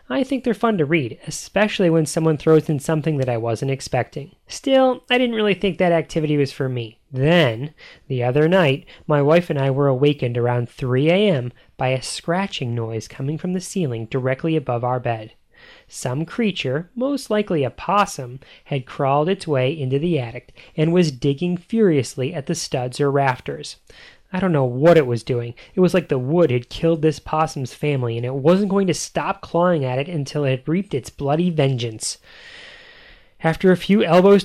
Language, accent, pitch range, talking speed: English, American, 135-185 Hz, 190 wpm